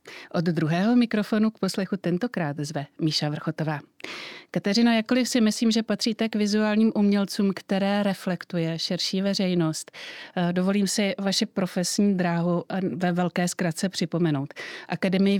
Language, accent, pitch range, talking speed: Czech, native, 160-195 Hz, 125 wpm